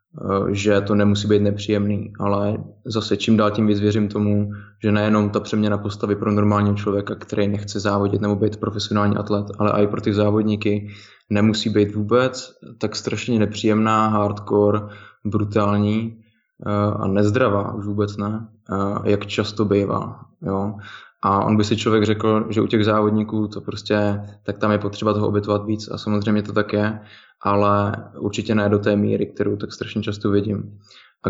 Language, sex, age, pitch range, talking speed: Slovak, male, 20-39, 100-110 Hz, 165 wpm